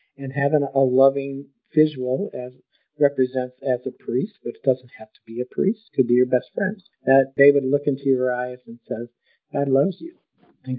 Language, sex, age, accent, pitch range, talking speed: English, male, 50-69, American, 125-140 Hz, 200 wpm